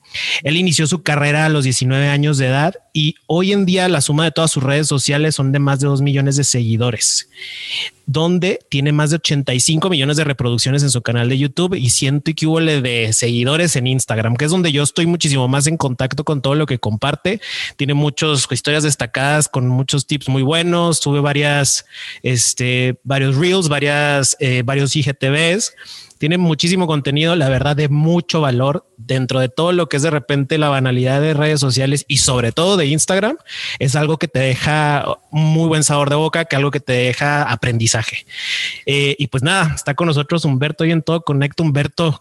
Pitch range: 135-160 Hz